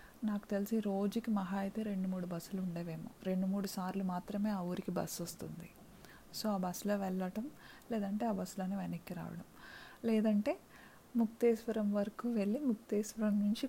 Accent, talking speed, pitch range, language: native, 140 wpm, 180-215 Hz, Telugu